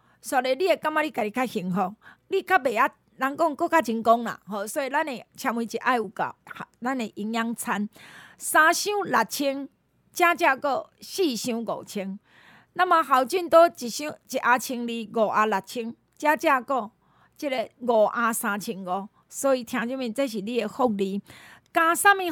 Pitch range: 230-320 Hz